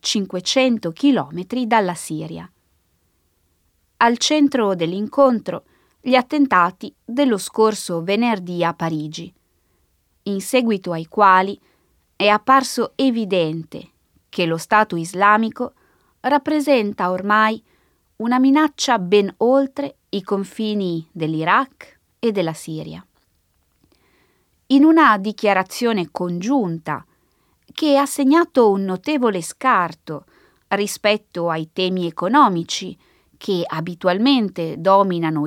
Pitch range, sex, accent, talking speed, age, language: 170-245 Hz, female, native, 90 wpm, 20-39, Italian